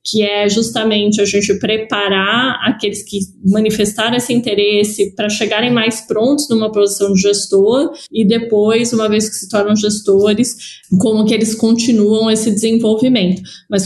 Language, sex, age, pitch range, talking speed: Portuguese, female, 20-39, 205-240 Hz, 145 wpm